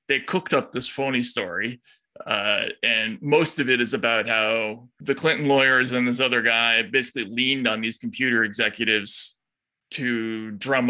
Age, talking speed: 20-39, 160 wpm